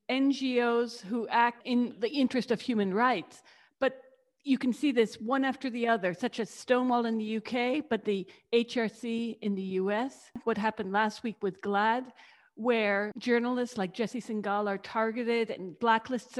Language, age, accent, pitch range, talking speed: English, 50-69, American, 215-255 Hz, 165 wpm